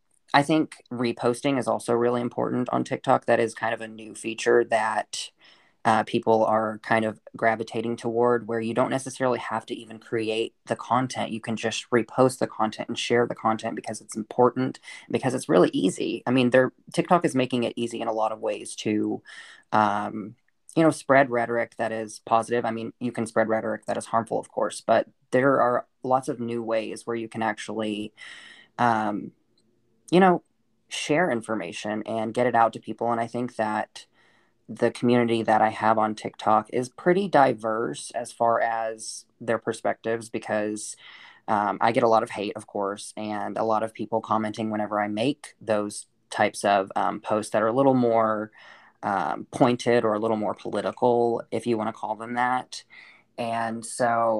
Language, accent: English, American